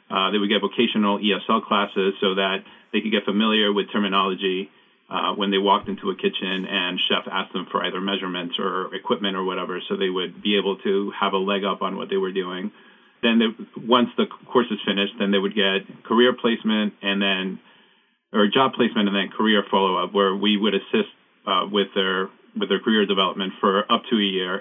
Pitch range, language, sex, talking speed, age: 100-115 Hz, English, male, 205 wpm, 40-59